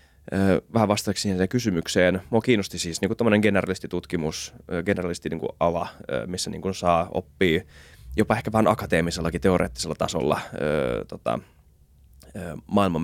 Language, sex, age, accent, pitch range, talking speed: Finnish, male, 20-39, native, 85-105 Hz, 115 wpm